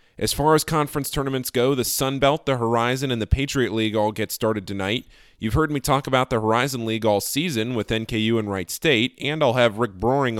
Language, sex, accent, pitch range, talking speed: English, male, American, 105-135 Hz, 225 wpm